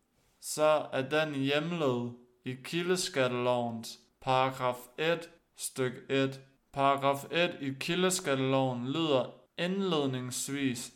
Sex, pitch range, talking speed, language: male, 125-150 Hz, 90 wpm, Danish